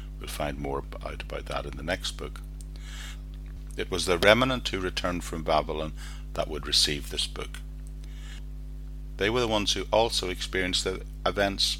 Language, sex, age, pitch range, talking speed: English, male, 50-69, 75-95 Hz, 165 wpm